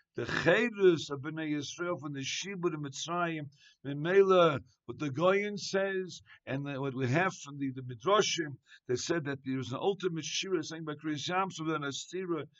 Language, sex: English, male